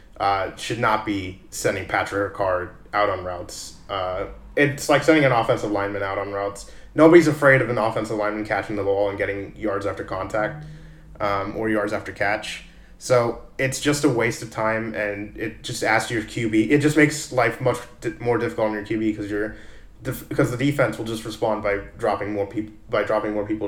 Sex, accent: male, American